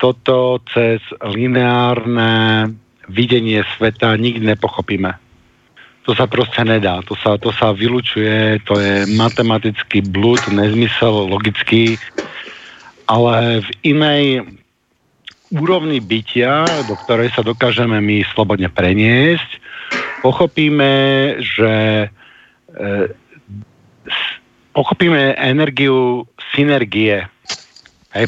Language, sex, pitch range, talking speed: Slovak, male, 110-130 Hz, 90 wpm